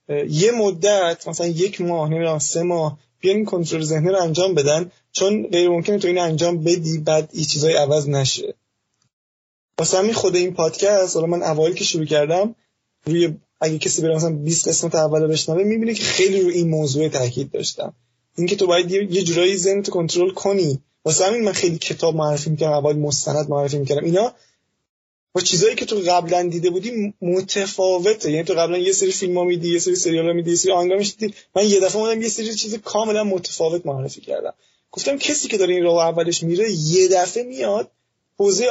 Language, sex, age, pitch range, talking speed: Persian, male, 20-39, 160-200 Hz, 180 wpm